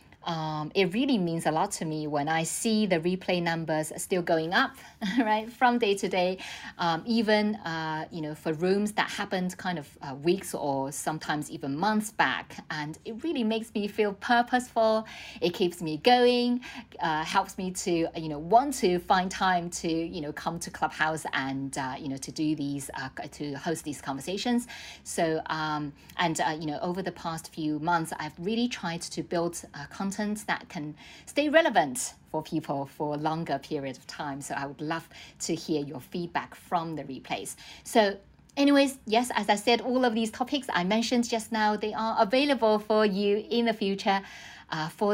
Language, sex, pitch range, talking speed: English, female, 155-225 Hz, 190 wpm